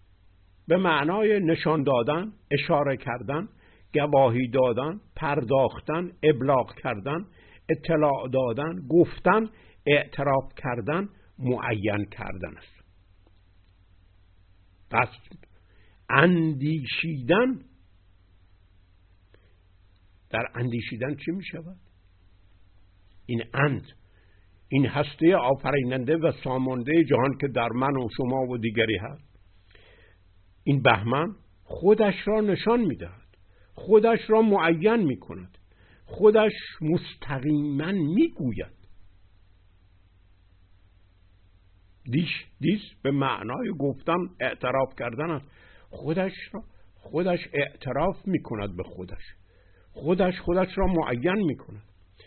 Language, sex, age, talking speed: Persian, male, 60-79, 85 wpm